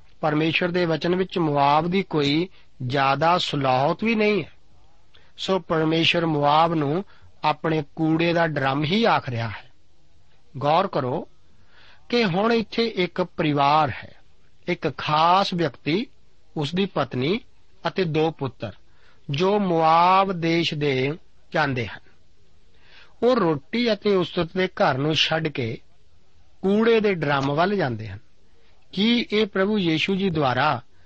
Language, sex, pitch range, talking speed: Punjabi, male, 130-185 Hz, 105 wpm